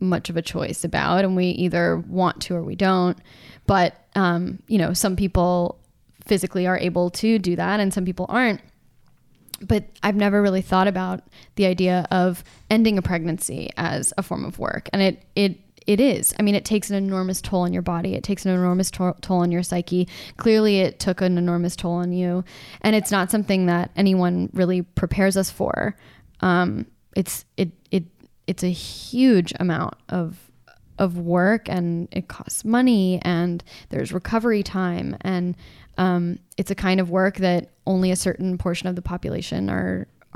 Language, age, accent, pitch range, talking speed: English, 10-29, American, 180-195 Hz, 180 wpm